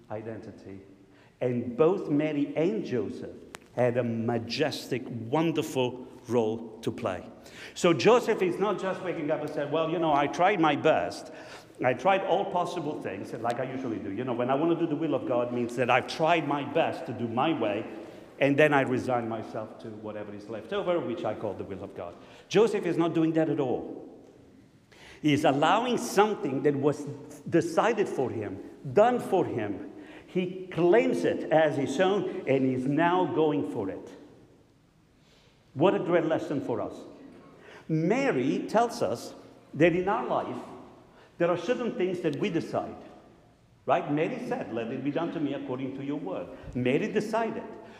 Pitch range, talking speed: 125-180 Hz, 175 wpm